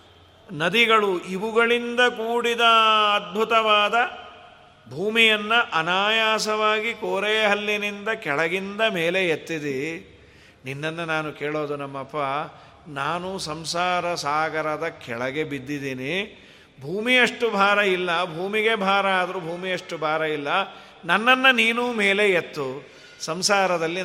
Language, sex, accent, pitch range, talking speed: Kannada, male, native, 165-225 Hz, 80 wpm